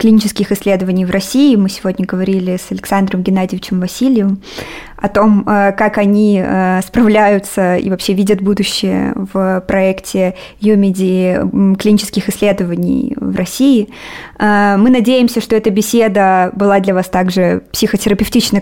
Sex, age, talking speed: female, 20-39, 120 wpm